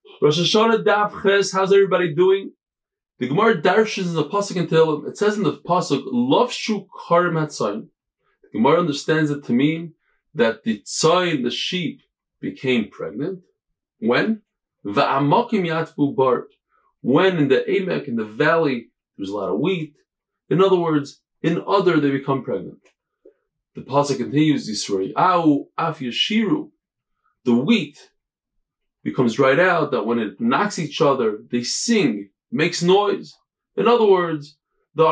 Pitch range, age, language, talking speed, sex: 145-215 Hz, 20-39, English, 140 wpm, male